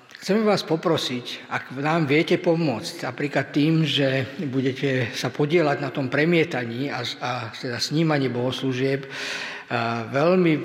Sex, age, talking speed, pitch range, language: male, 50-69, 130 wpm, 130-155 Hz, Slovak